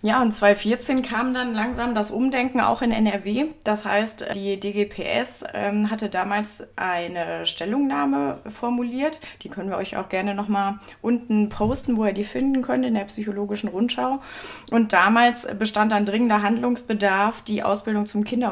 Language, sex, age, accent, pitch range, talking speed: German, female, 20-39, German, 200-230 Hz, 155 wpm